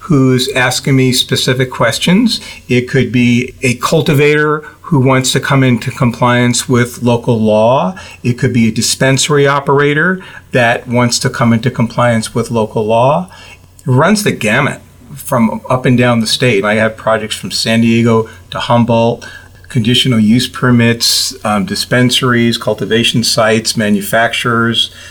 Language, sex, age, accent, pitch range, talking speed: English, male, 40-59, American, 115-135 Hz, 140 wpm